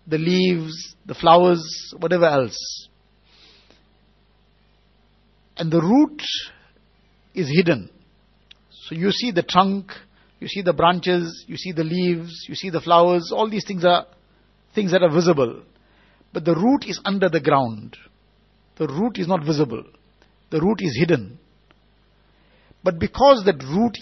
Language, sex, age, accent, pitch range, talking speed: English, male, 60-79, Indian, 165-200 Hz, 140 wpm